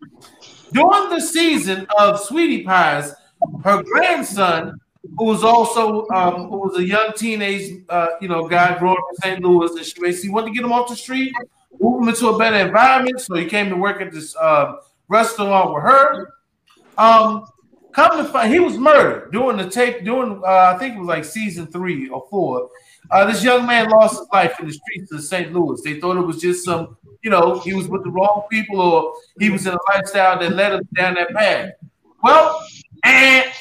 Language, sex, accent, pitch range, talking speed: English, male, American, 180-265 Hz, 205 wpm